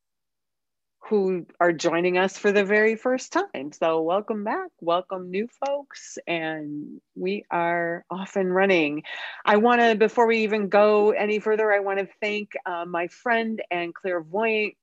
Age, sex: 40-59, female